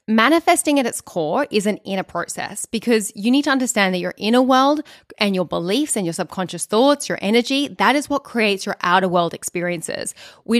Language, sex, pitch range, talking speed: English, female, 185-235 Hz, 200 wpm